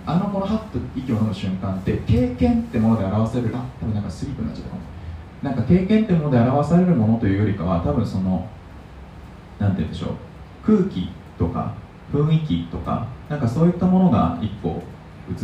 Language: Japanese